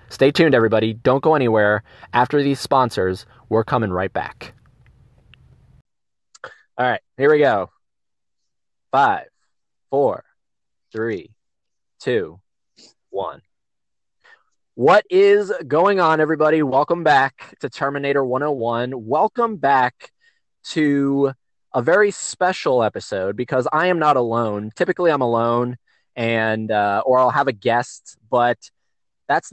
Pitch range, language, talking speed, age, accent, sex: 115-150 Hz, English, 115 wpm, 20-39, American, male